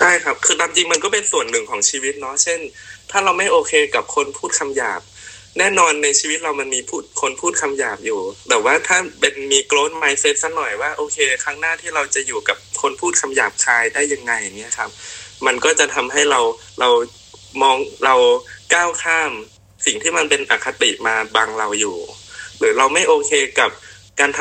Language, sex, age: Thai, male, 20-39